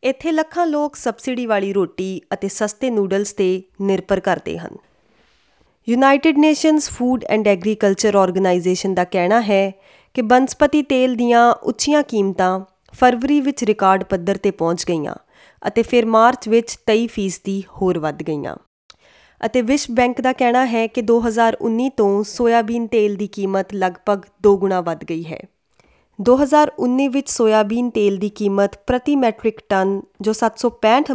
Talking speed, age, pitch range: 135 wpm, 20-39, 195-250 Hz